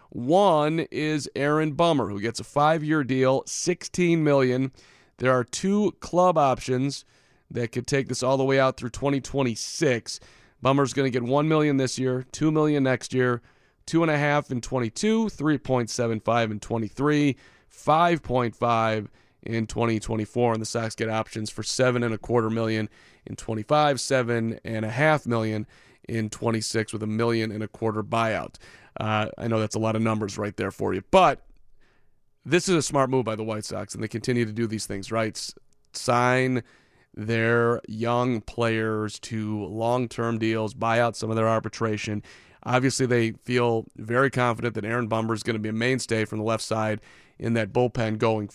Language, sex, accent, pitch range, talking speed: English, male, American, 110-135 Hz, 165 wpm